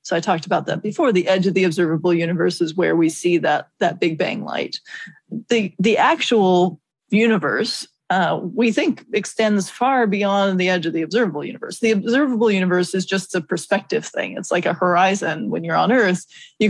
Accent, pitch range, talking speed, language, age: American, 180-220 Hz, 195 wpm, English, 30-49